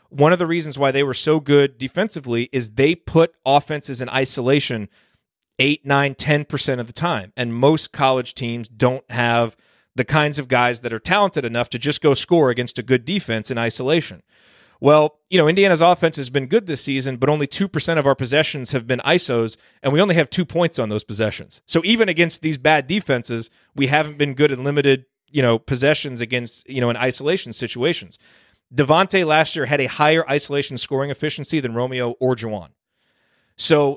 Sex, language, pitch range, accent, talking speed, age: male, English, 125-165 Hz, American, 195 wpm, 30-49